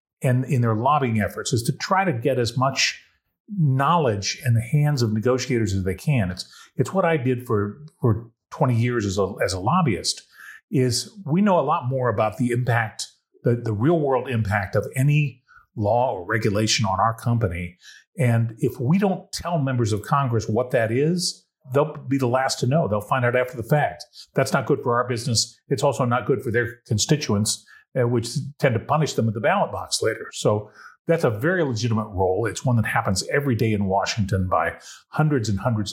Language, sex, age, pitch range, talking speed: English, male, 40-59, 110-140 Hz, 200 wpm